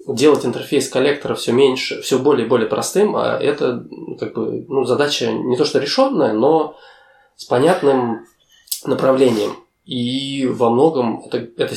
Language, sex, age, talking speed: Russian, male, 20-39, 150 wpm